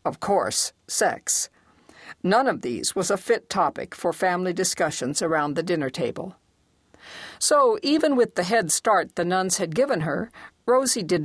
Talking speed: 160 wpm